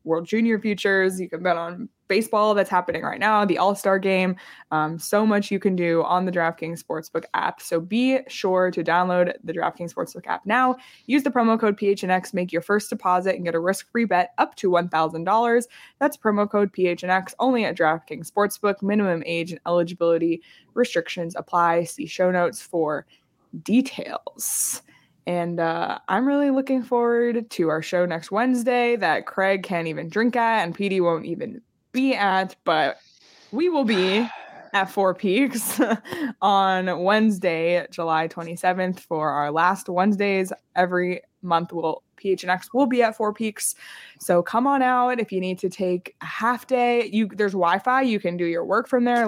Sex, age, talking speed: female, 20-39, 170 wpm